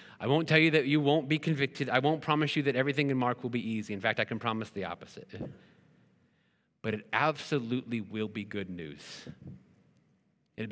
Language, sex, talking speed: English, male, 195 wpm